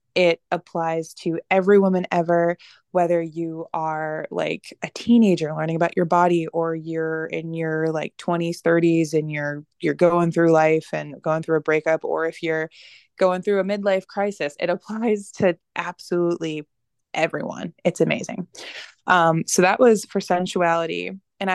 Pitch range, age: 160-180 Hz, 20-39